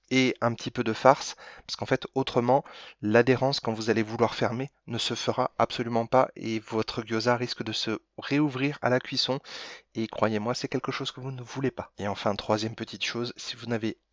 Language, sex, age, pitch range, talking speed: French, male, 30-49, 110-135 Hz, 210 wpm